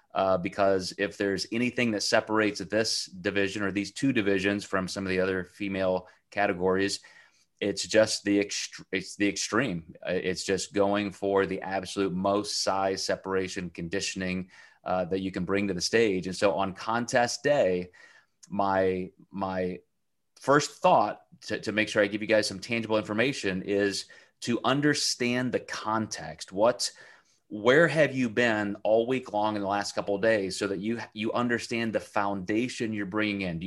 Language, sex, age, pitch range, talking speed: English, male, 30-49, 95-115 Hz, 170 wpm